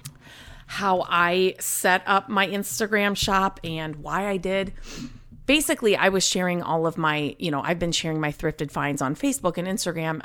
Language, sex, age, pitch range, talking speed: English, female, 30-49, 150-185 Hz, 175 wpm